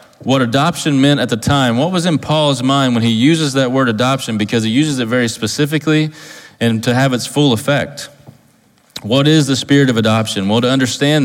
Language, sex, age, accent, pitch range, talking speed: English, male, 30-49, American, 105-135 Hz, 205 wpm